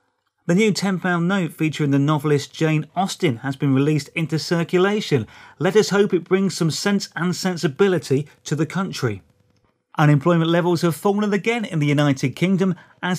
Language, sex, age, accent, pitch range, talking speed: English, male, 30-49, British, 145-180 Hz, 165 wpm